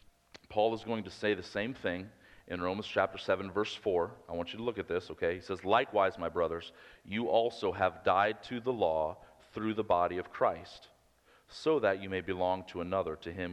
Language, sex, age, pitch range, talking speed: English, male, 40-59, 85-100 Hz, 215 wpm